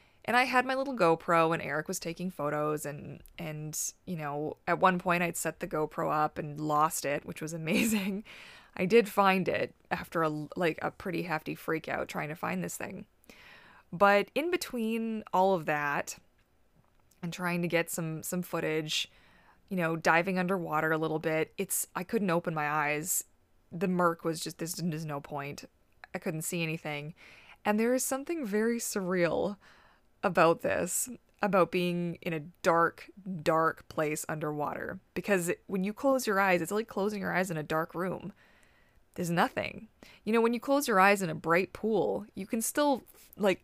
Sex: female